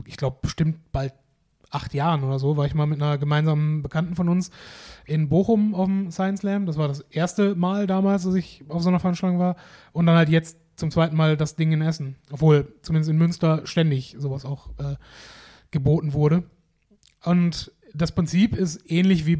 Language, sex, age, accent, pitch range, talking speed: German, male, 30-49, German, 150-180 Hz, 195 wpm